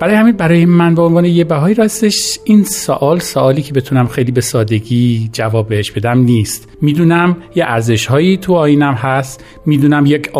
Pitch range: 125-170 Hz